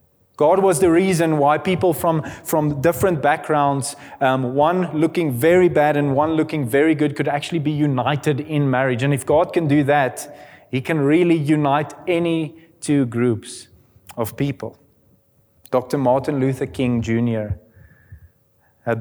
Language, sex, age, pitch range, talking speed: English, male, 30-49, 120-160 Hz, 150 wpm